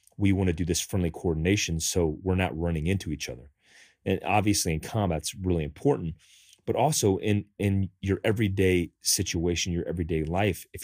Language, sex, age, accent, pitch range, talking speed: English, male, 30-49, American, 85-100 Hz, 175 wpm